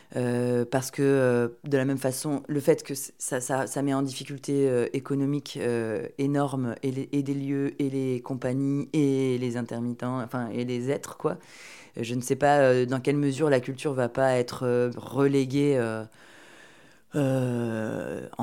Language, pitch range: French, 120-145 Hz